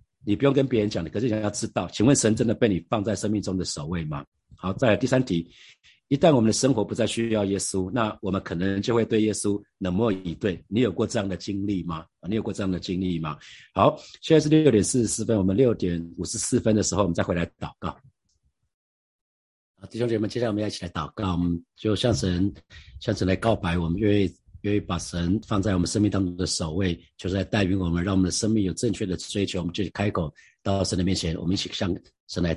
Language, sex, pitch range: Chinese, male, 85-105 Hz